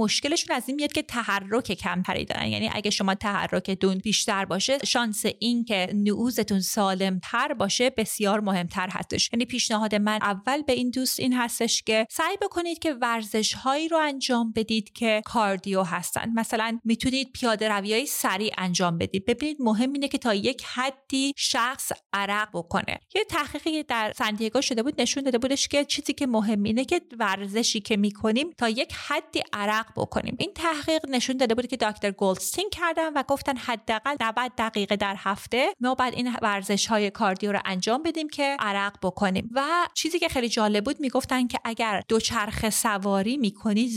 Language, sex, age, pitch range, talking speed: Persian, female, 30-49, 205-270 Hz, 165 wpm